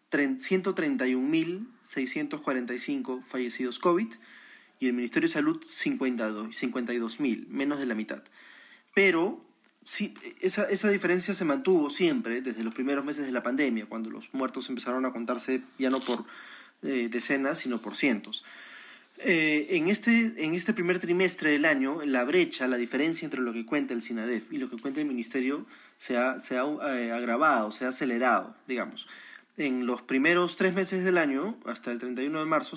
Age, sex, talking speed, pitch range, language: 20-39, male, 155 wpm, 125-190 Hz, Spanish